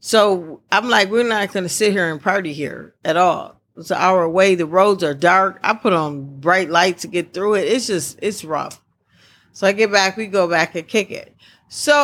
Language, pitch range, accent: English, 170-215 Hz, American